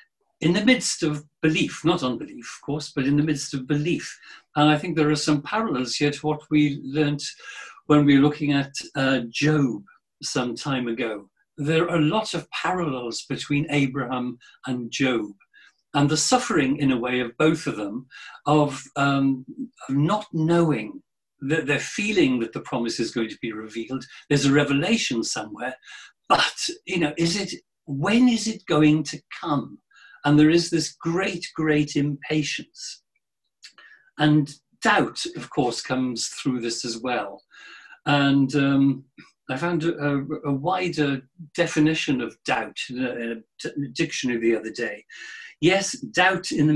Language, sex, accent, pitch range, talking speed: English, male, British, 135-170 Hz, 160 wpm